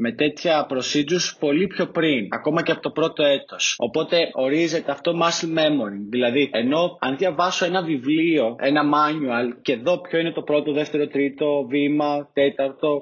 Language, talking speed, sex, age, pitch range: Greek, 160 wpm, male, 20-39, 145-185 Hz